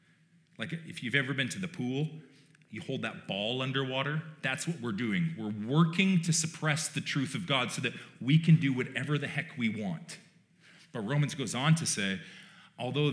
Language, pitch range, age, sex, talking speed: English, 140-170 Hz, 40-59, male, 190 wpm